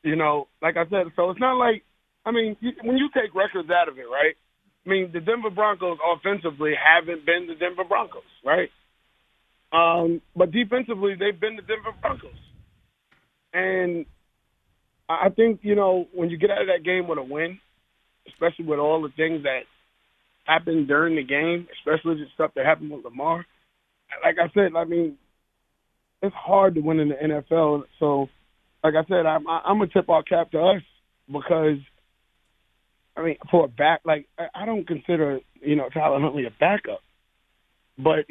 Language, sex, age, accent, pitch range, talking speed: English, male, 30-49, American, 145-185 Hz, 175 wpm